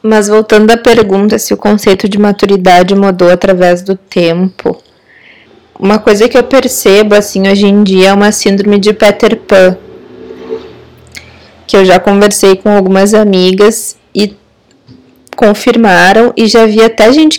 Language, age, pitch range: Portuguese, 20-39, 185-215 Hz